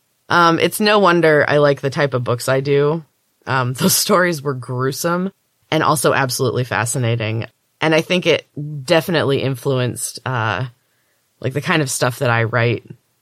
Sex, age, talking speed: female, 20-39, 165 wpm